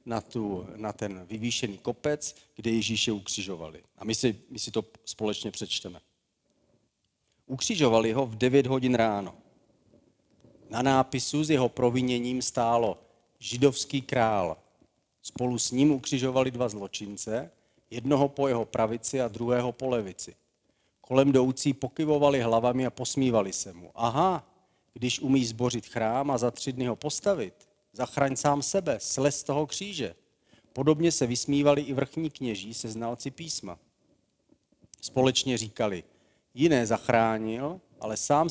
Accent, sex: native, male